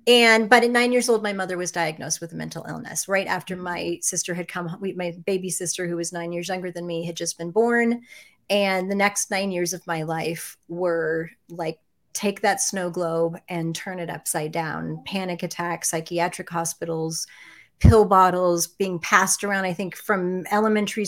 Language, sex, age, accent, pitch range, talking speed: English, female, 30-49, American, 170-205 Hz, 190 wpm